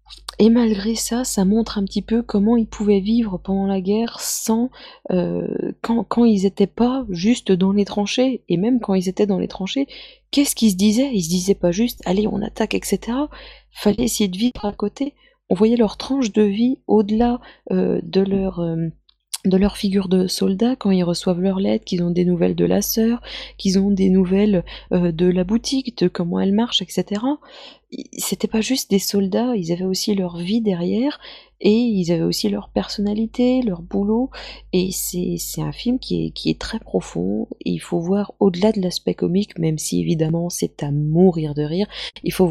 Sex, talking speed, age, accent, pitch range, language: female, 200 wpm, 20-39, French, 180-225 Hz, French